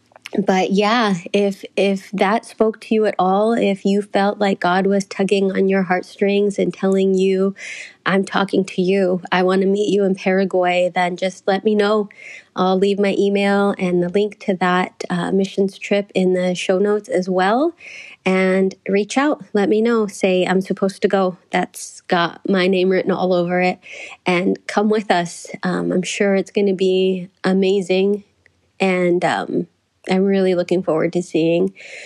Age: 30-49